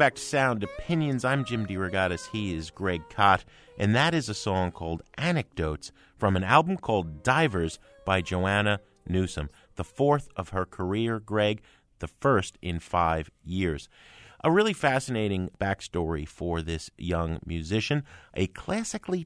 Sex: male